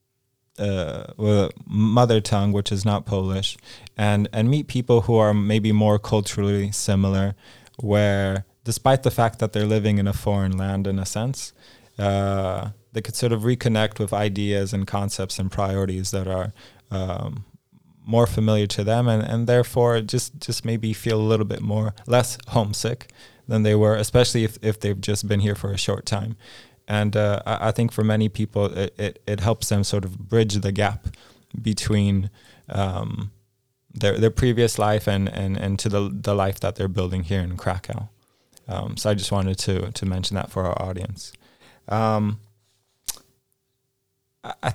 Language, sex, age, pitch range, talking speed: English, male, 20-39, 100-115 Hz, 170 wpm